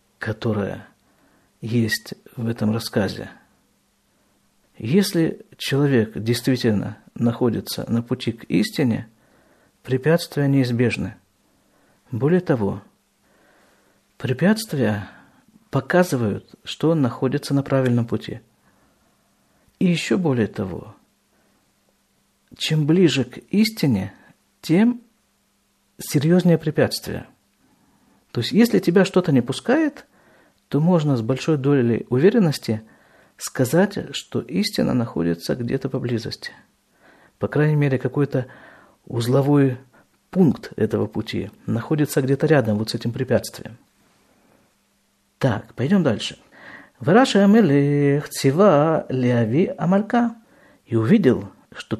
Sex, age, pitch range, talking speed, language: male, 50-69, 120-185 Hz, 90 wpm, Russian